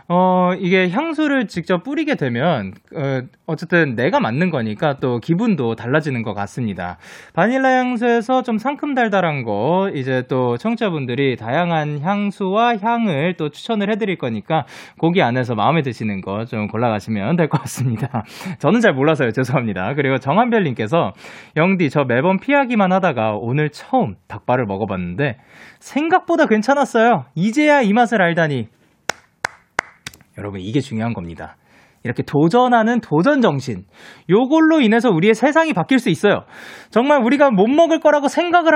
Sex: male